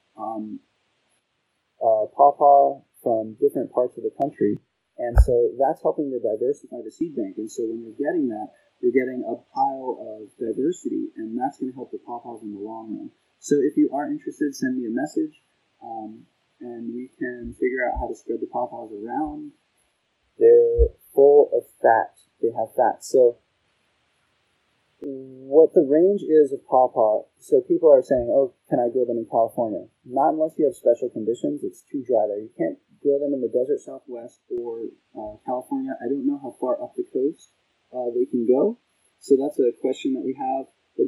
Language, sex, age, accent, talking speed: English, male, 30-49, American, 185 wpm